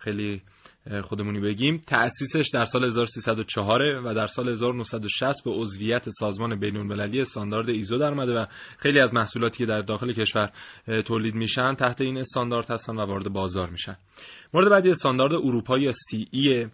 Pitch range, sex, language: 110-130 Hz, male, Persian